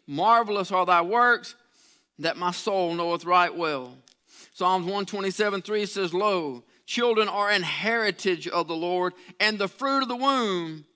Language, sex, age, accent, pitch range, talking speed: English, male, 50-69, American, 180-220 Hz, 150 wpm